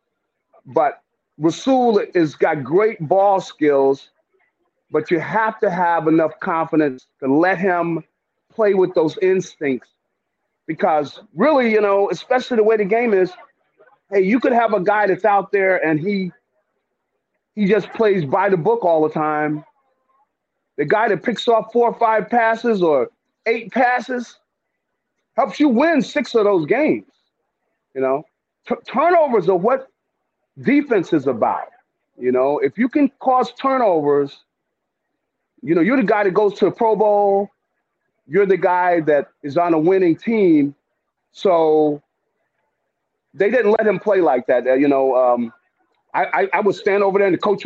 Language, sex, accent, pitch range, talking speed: English, male, American, 165-235 Hz, 160 wpm